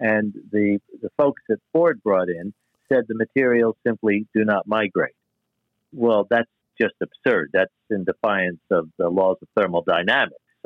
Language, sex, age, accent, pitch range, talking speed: English, male, 60-79, American, 105-125 Hz, 150 wpm